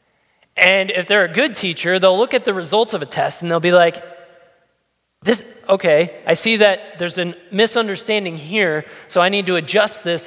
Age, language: 20-39, English